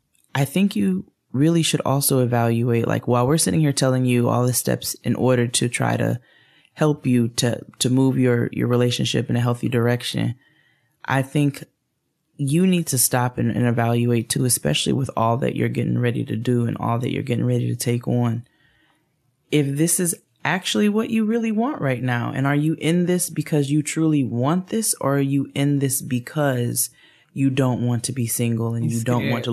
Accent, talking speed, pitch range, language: American, 200 wpm, 120-140 Hz, English